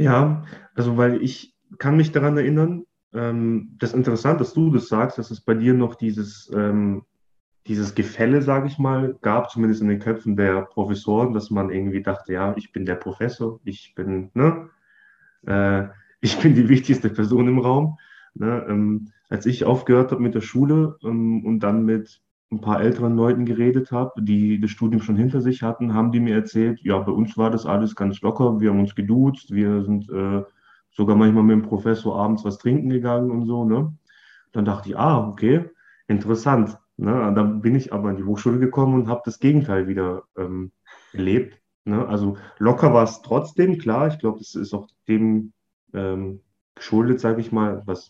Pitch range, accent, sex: 105-125 Hz, German, male